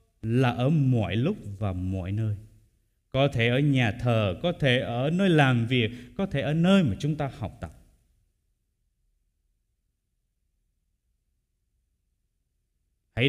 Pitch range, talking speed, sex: 105-160 Hz, 125 wpm, male